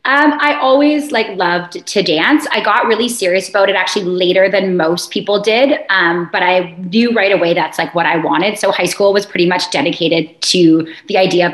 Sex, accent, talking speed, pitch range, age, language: female, American, 215 wpm, 180-200 Hz, 20-39, English